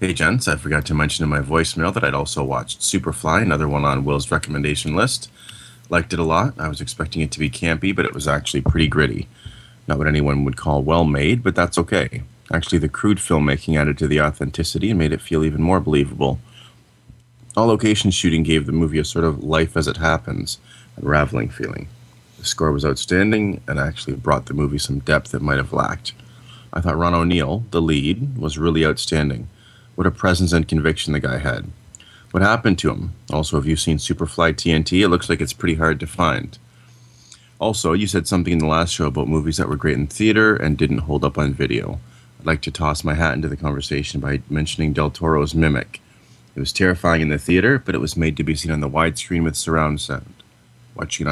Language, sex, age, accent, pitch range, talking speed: English, male, 30-49, American, 75-90 Hz, 210 wpm